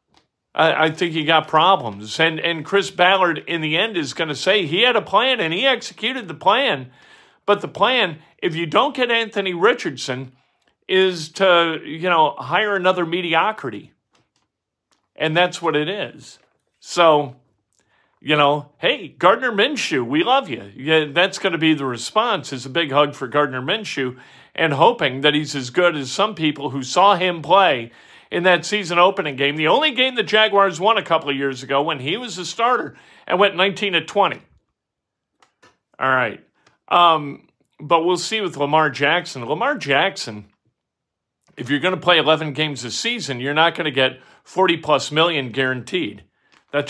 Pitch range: 145-190 Hz